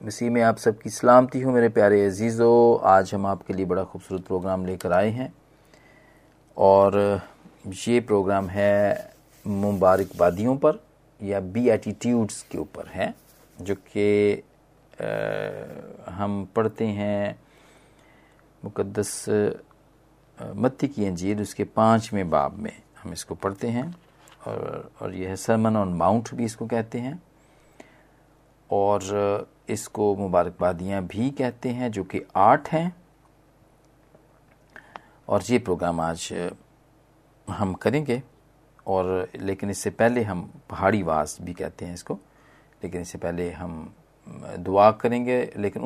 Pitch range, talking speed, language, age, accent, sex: 95-125 Hz, 120 wpm, Hindi, 40-59, native, male